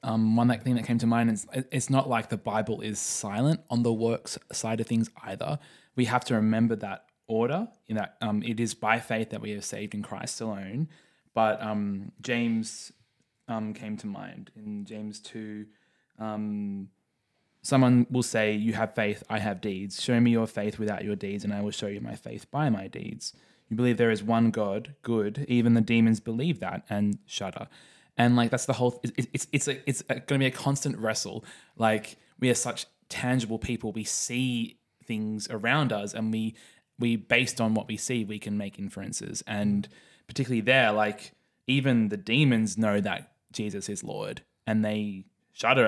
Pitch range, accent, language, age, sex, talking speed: 105-120 Hz, Australian, English, 20-39, male, 195 wpm